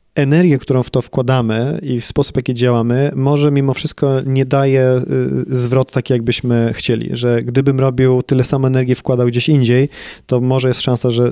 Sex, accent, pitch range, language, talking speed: male, native, 115-135 Hz, Polish, 180 wpm